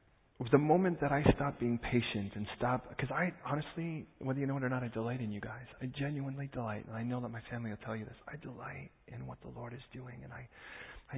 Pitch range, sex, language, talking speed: 110-135 Hz, male, English, 250 wpm